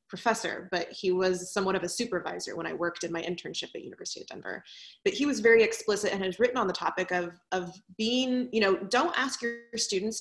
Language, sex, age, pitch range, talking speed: English, female, 20-39, 180-220 Hz, 225 wpm